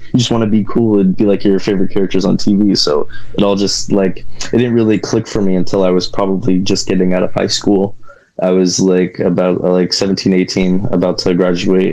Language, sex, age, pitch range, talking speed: English, male, 20-39, 90-100 Hz, 225 wpm